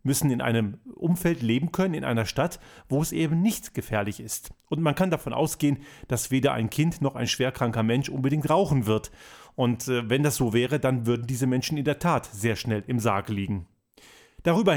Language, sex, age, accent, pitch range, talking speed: German, male, 40-59, German, 120-160 Hz, 200 wpm